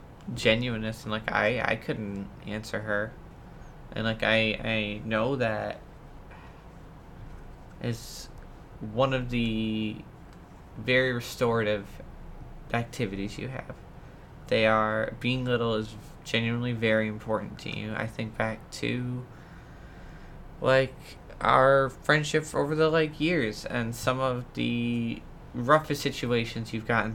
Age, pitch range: 20-39, 110-125 Hz